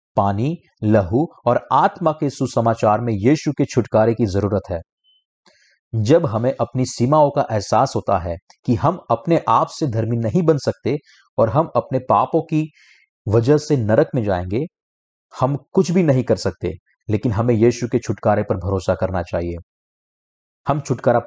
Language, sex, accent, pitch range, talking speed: Hindi, male, native, 100-135 Hz, 160 wpm